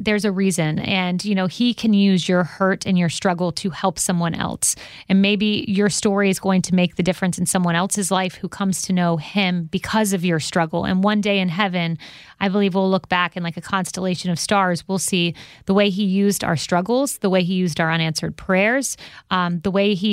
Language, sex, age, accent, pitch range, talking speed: English, female, 30-49, American, 170-195 Hz, 225 wpm